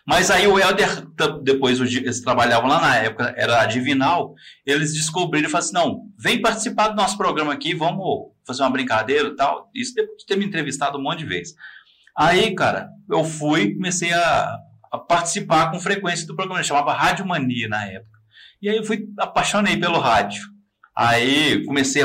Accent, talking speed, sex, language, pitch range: Brazilian, 180 wpm, male, Portuguese, 135-180 Hz